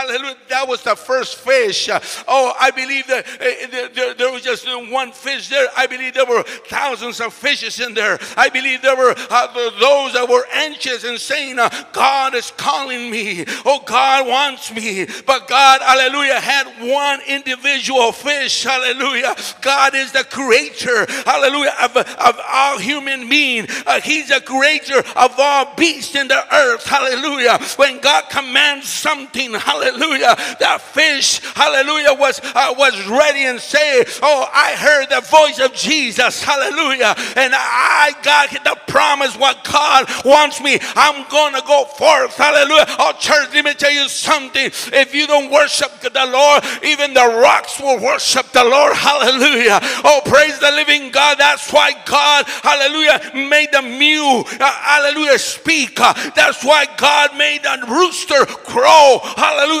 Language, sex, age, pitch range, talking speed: English, male, 60-79, 255-290 Hz, 155 wpm